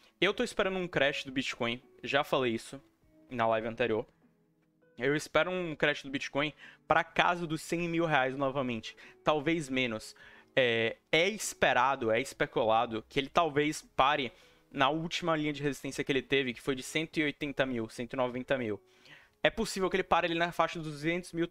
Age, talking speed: 20-39, 175 wpm